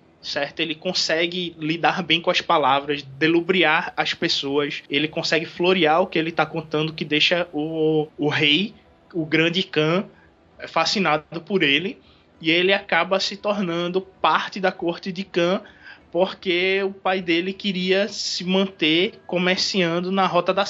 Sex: male